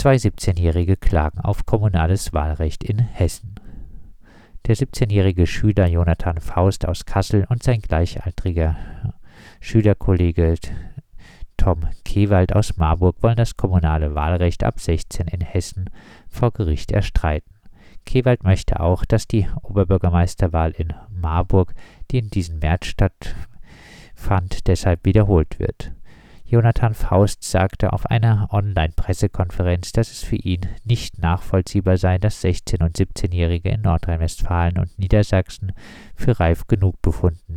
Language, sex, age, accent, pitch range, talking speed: German, male, 50-69, German, 85-105 Hz, 120 wpm